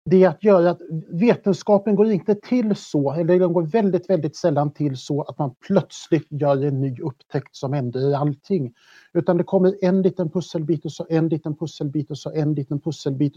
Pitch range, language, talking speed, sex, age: 140-180 Hz, Swedish, 200 wpm, male, 50-69